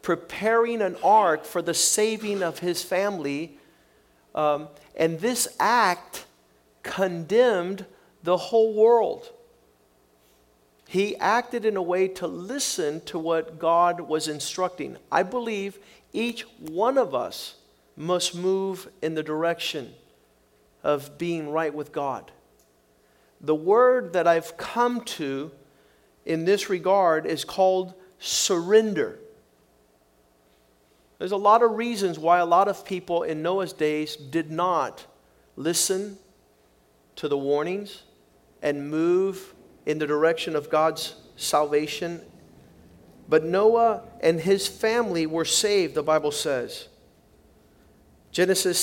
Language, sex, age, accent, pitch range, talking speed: English, male, 50-69, American, 150-205 Hz, 115 wpm